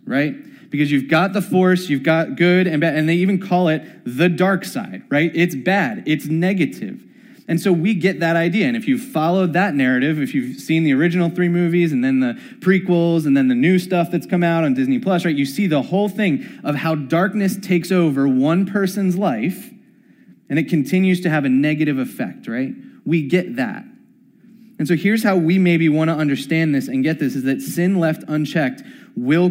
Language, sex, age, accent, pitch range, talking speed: English, male, 20-39, American, 155-230 Hz, 205 wpm